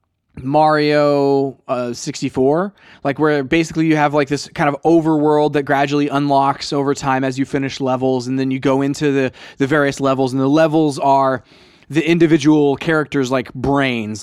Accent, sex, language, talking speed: American, male, English, 170 wpm